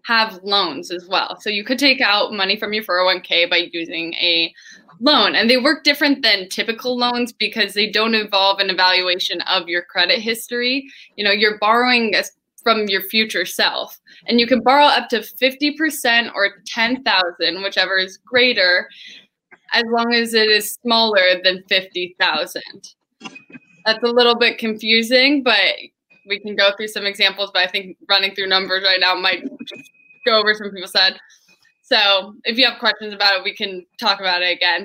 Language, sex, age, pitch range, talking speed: English, female, 10-29, 190-240 Hz, 175 wpm